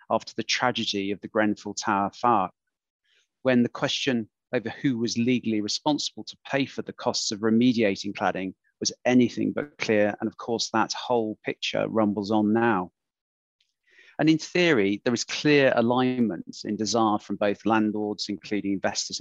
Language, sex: English, male